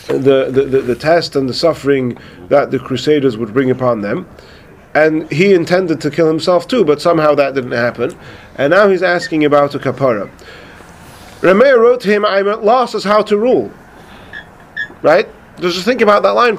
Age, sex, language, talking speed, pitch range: 40-59, male, English, 180 wpm, 145-210 Hz